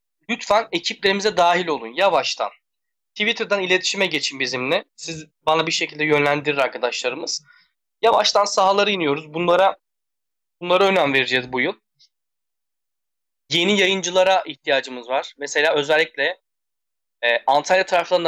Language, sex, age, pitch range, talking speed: Turkish, male, 10-29, 150-200 Hz, 110 wpm